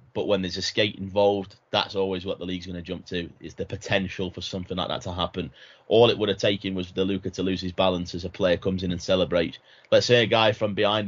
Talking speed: 265 wpm